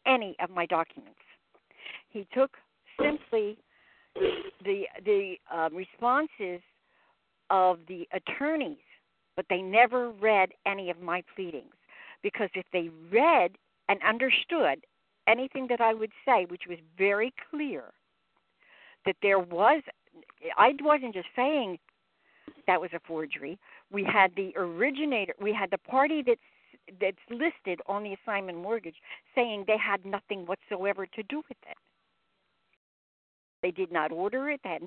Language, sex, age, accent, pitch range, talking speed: English, female, 60-79, American, 195-290 Hz, 135 wpm